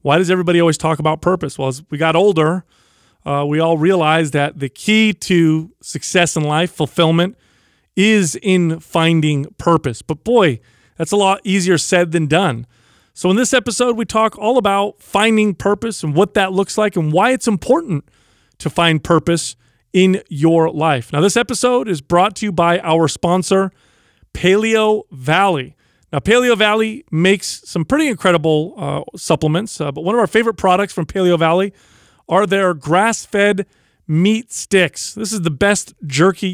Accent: American